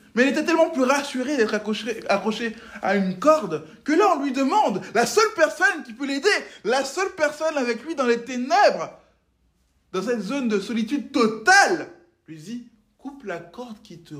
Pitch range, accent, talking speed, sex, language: 155-265 Hz, French, 185 wpm, male, French